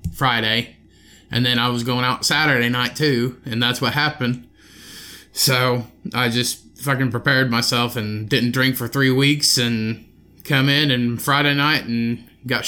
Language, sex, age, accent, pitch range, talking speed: English, male, 20-39, American, 110-135 Hz, 160 wpm